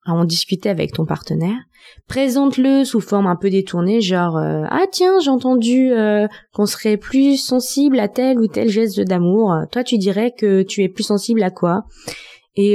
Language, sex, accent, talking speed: French, female, French, 190 wpm